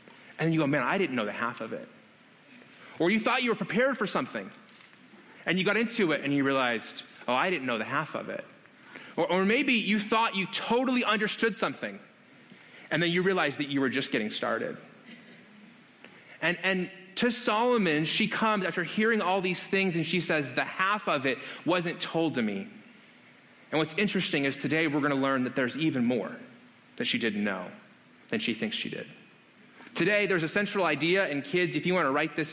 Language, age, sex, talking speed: English, 30-49, male, 205 wpm